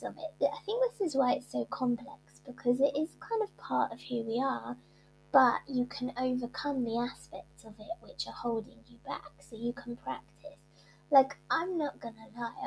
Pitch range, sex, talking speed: 230-270 Hz, female, 200 wpm